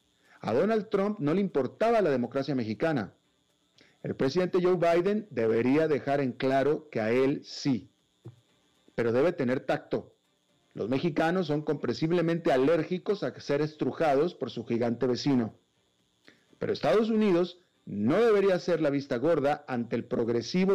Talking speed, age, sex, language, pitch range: 140 wpm, 40-59, male, Spanish, 120-175 Hz